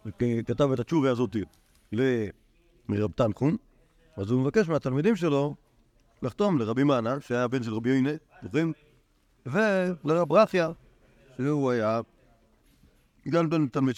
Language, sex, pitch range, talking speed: Hebrew, male, 115-155 Hz, 115 wpm